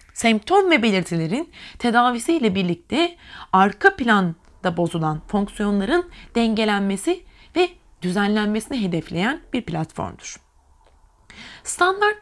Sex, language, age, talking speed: female, Turkish, 30-49, 80 wpm